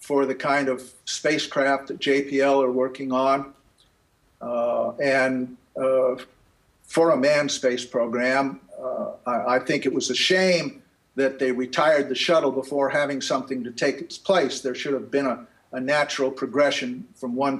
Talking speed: 165 wpm